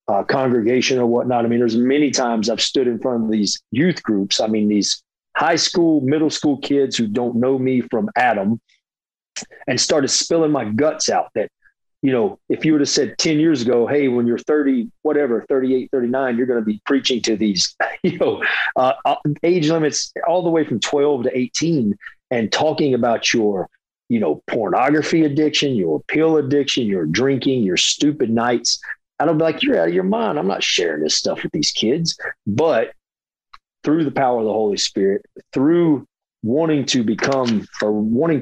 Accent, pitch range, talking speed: American, 115-155 Hz, 185 wpm